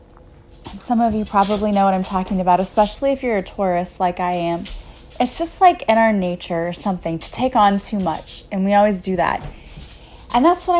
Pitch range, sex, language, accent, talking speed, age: 190-240 Hz, female, English, American, 210 wpm, 20-39